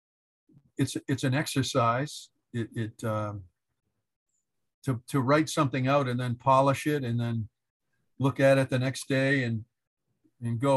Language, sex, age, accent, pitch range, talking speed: English, male, 50-69, American, 120-140 Hz, 150 wpm